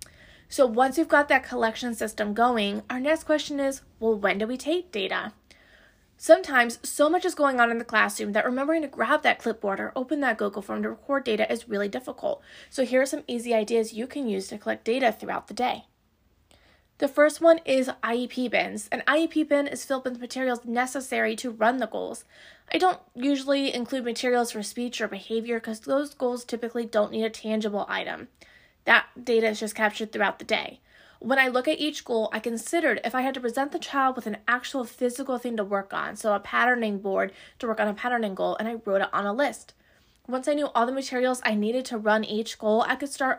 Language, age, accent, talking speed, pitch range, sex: English, 20-39, American, 220 wpm, 220-280 Hz, female